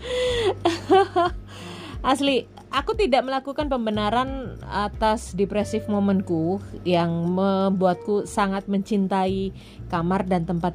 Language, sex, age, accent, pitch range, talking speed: Indonesian, female, 30-49, native, 180-245 Hz, 85 wpm